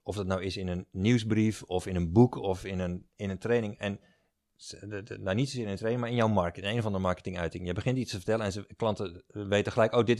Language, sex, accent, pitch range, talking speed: Dutch, male, Dutch, 90-115 Hz, 260 wpm